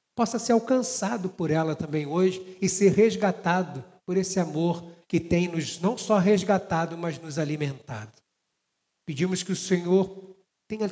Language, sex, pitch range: Portuguese, male, 165-205 Hz